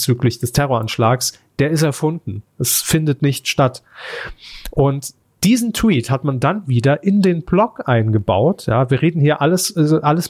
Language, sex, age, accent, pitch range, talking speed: German, male, 40-59, German, 125-160 Hz, 150 wpm